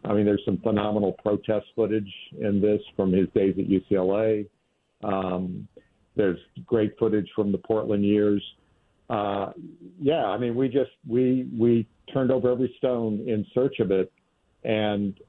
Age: 50-69